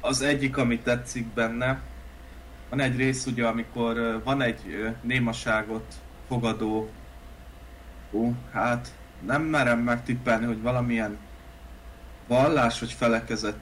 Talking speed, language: 105 wpm, Hungarian